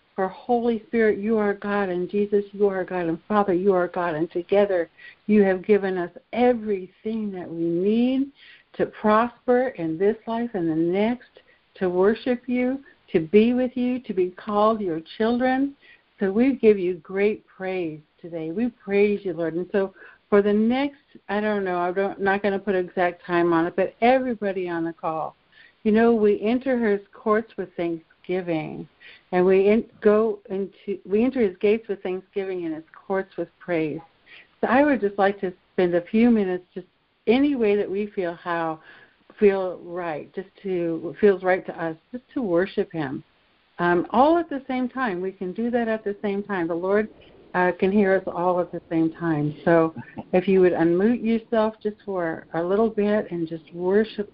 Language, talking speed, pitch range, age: English, 185 wpm, 180-220 Hz, 60-79